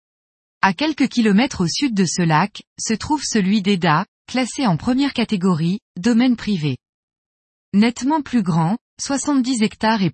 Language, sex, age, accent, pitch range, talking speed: French, female, 20-39, French, 180-245 Hz, 140 wpm